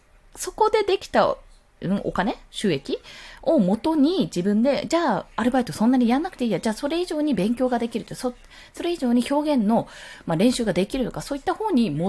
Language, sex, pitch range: Japanese, female, 175-280 Hz